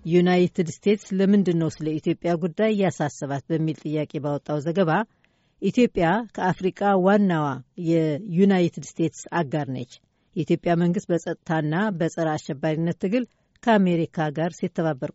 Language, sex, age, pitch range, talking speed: Amharic, female, 60-79, 155-190 Hz, 110 wpm